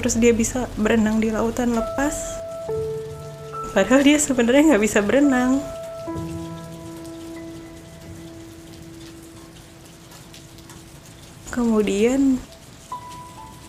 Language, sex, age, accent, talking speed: Indonesian, female, 20-39, native, 60 wpm